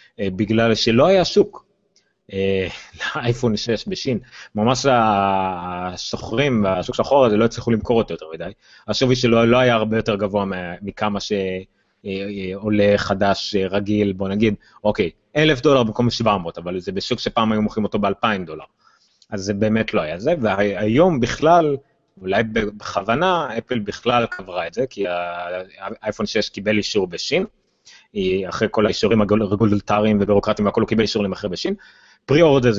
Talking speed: 150 wpm